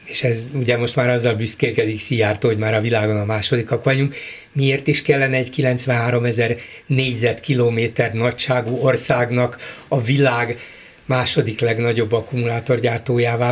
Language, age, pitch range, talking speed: Hungarian, 60-79, 120-150 Hz, 130 wpm